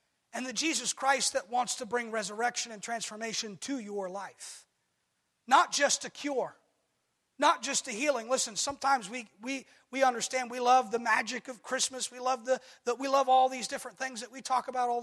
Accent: American